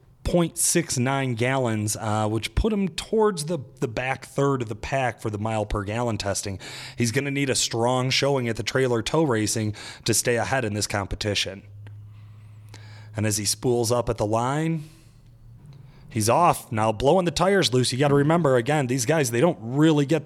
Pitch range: 110-150 Hz